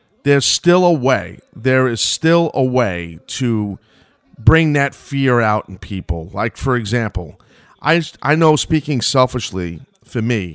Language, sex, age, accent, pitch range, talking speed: English, male, 40-59, American, 105-140 Hz, 150 wpm